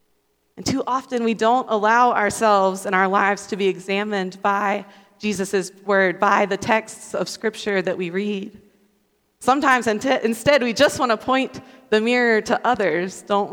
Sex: female